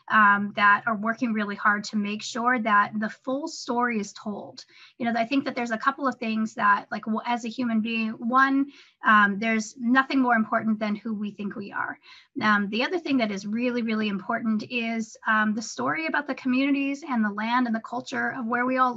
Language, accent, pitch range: English, American, 220-255 Hz